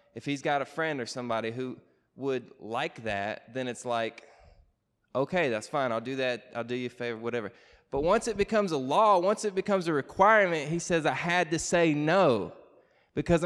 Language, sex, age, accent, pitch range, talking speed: English, male, 20-39, American, 115-155 Hz, 200 wpm